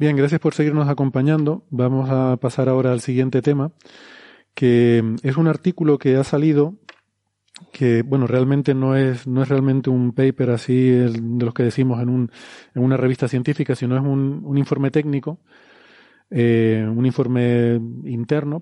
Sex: male